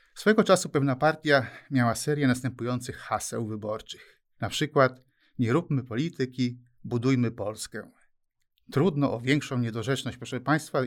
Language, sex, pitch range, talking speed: Polish, male, 120-140 Hz, 120 wpm